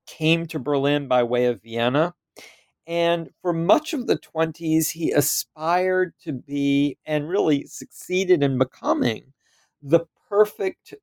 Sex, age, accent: male, 40-59, American